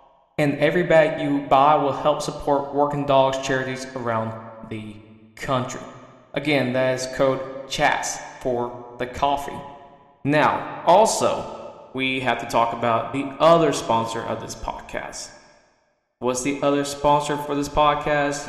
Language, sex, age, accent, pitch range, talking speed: English, male, 20-39, American, 125-150 Hz, 135 wpm